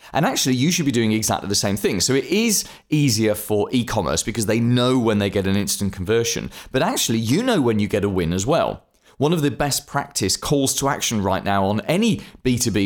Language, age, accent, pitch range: English, 30-49, British, 100-135 Hz